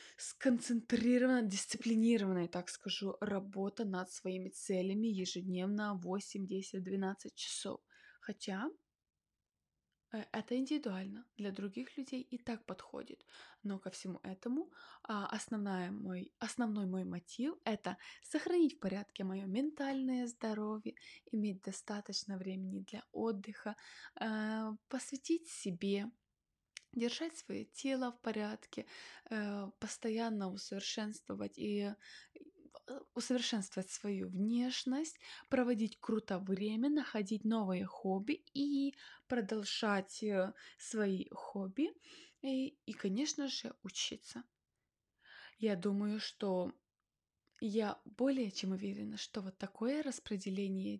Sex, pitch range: female, 195-250 Hz